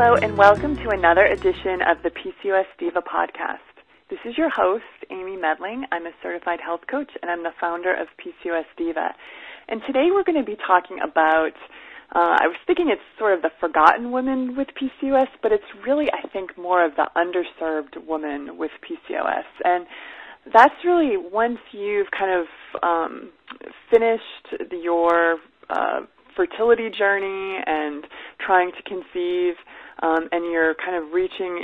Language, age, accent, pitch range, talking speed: English, 20-39, American, 170-260 Hz, 160 wpm